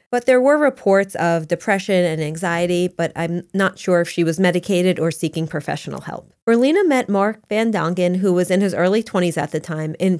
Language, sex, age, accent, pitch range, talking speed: English, female, 30-49, American, 175-220 Hz, 205 wpm